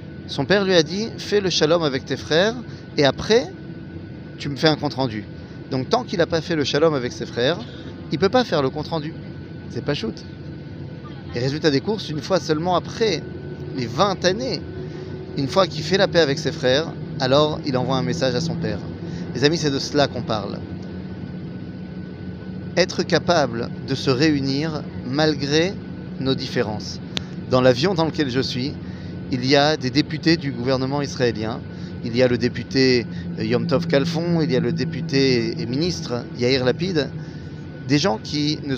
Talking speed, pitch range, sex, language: 185 wpm, 130-165 Hz, male, French